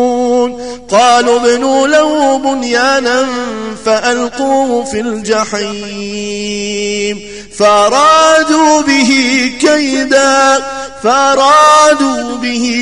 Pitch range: 220-270 Hz